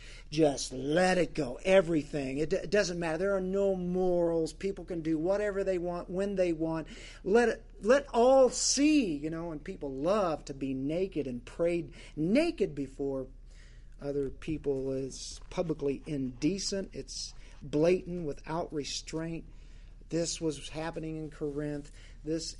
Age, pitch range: 50-69, 145-180 Hz